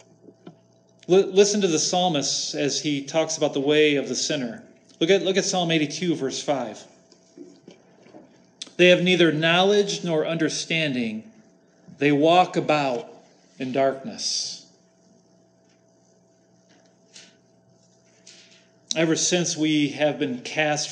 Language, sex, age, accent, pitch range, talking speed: English, male, 40-59, American, 130-160 Hz, 105 wpm